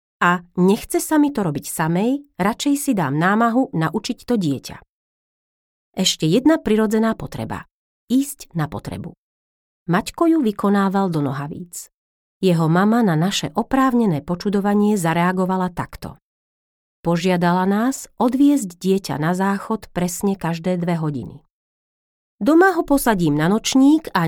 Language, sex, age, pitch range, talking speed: Slovak, female, 30-49, 160-235 Hz, 125 wpm